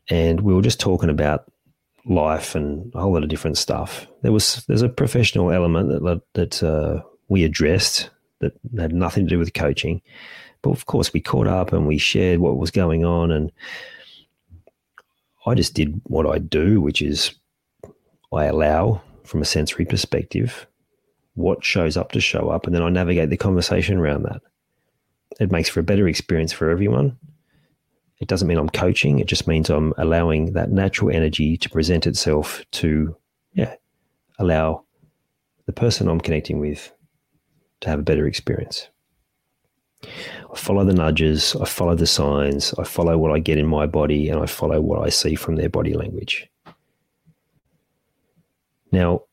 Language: English